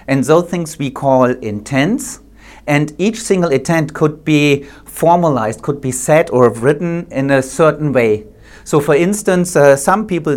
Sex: male